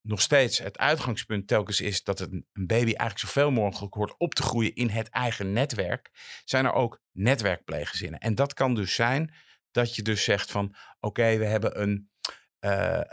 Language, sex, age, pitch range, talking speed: Dutch, male, 50-69, 100-120 Hz, 180 wpm